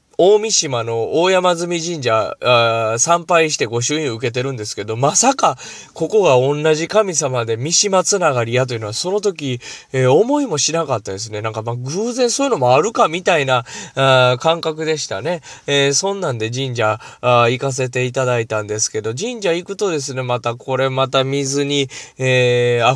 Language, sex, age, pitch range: Japanese, male, 20-39, 125-170 Hz